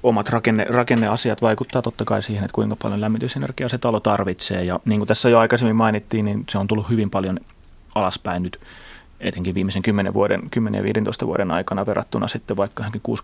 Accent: native